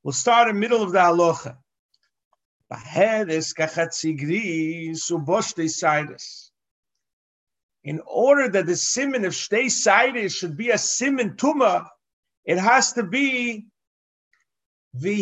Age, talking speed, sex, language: 50-69, 105 wpm, male, English